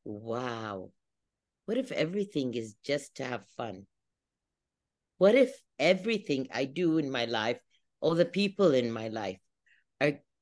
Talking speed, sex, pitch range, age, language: 140 wpm, female, 140-190 Hz, 50-69, English